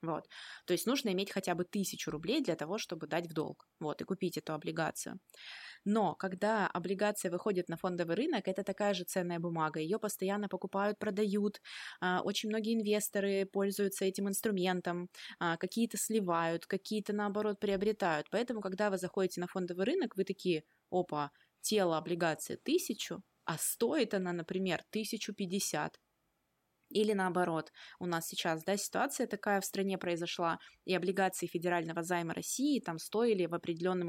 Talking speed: 150 wpm